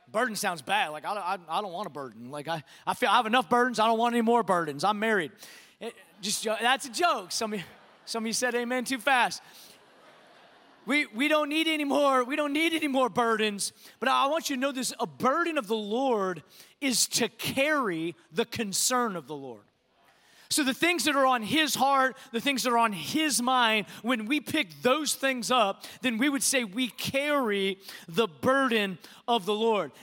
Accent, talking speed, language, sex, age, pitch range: American, 210 wpm, English, male, 30-49, 210-265 Hz